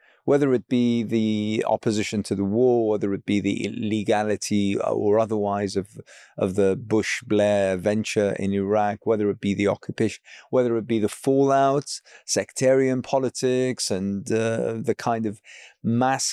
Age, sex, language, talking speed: 30-49, male, English, 150 wpm